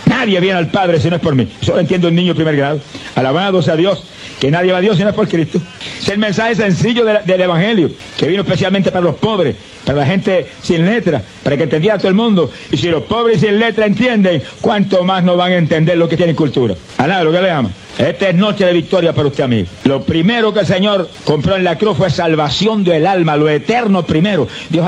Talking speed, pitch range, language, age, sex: 245 wpm, 165-205 Hz, Spanish, 60-79, male